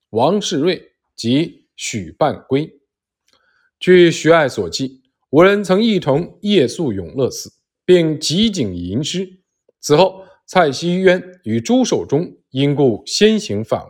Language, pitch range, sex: Chinese, 130-205 Hz, male